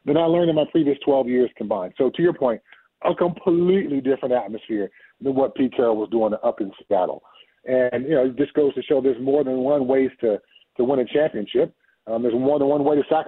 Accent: American